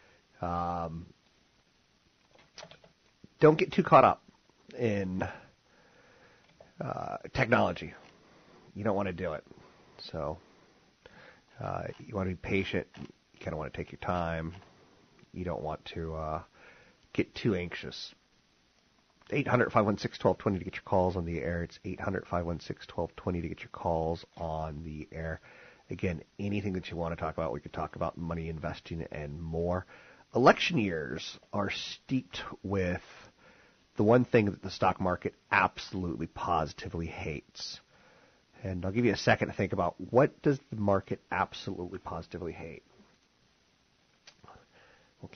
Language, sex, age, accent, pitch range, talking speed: English, male, 30-49, American, 85-100 Hz, 135 wpm